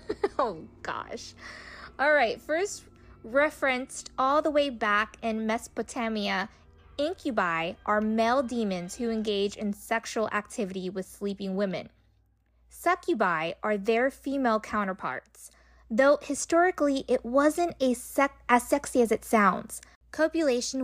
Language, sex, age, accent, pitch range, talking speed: English, female, 20-39, American, 200-275 Hz, 110 wpm